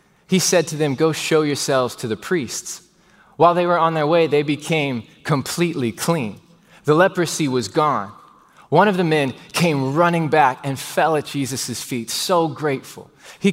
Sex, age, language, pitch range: male, 20-39, English, 135-190 Hz